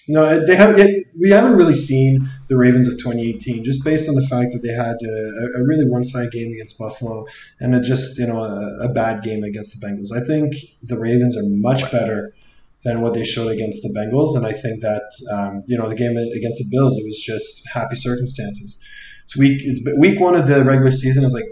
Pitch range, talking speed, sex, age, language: 110-130 Hz, 230 wpm, male, 20-39, English